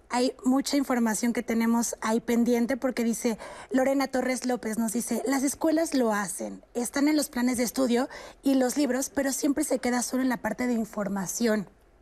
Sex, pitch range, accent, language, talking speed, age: female, 225-270 Hz, Mexican, Spanish, 185 wpm, 30-49